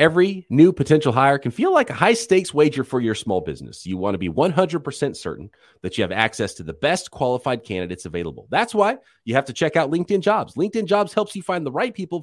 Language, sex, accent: English, male, American